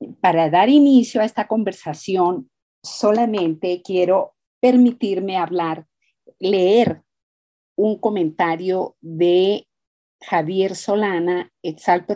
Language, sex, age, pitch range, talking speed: Spanish, female, 40-59, 170-215 Hz, 85 wpm